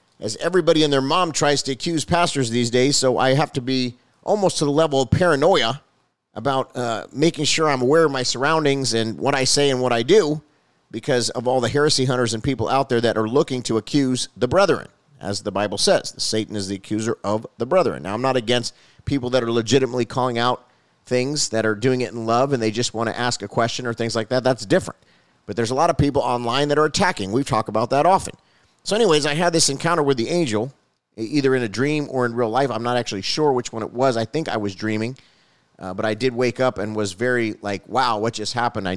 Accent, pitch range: American, 115-140 Hz